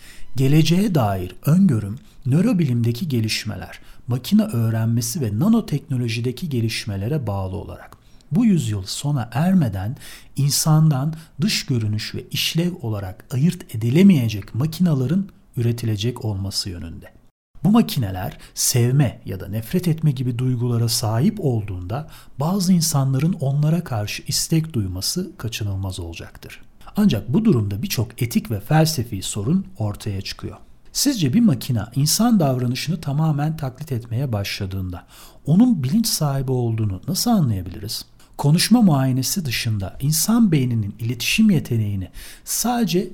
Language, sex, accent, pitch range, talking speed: Turkish, male, native, 110-160 Hz, 110 wpm